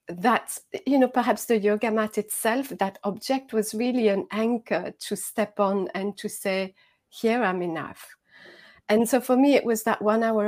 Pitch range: 195-235 Hz